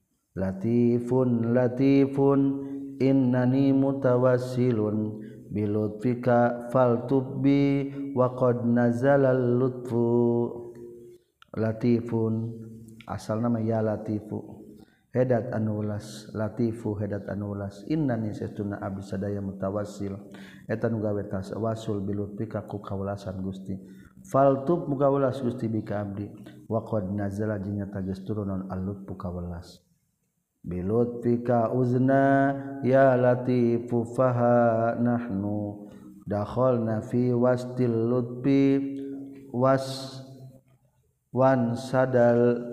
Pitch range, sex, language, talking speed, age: 105-125 Hz, male, Indonesian, 80 wpm, 40-59